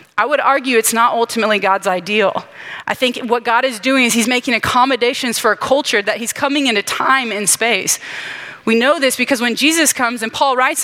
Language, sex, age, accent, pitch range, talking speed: English, female, 30-49, American, 210-255 Hz, 210 wpm